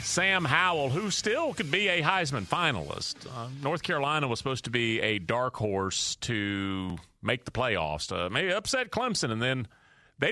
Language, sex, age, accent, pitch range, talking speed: English, male, 40-59, American, 110-155 Hz, 175 wpm